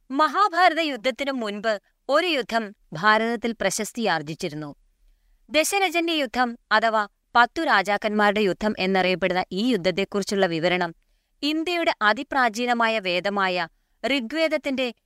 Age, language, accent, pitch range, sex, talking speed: 20-39, Malayalam, native, 200-275 Hz, female, 85 wpm